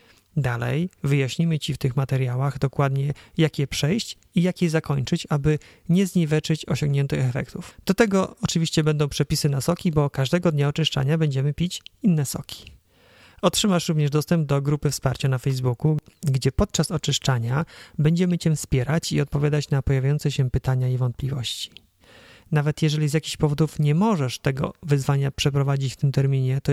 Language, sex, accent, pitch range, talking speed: Polish, male, native, 135-160 Hz, 155 wpm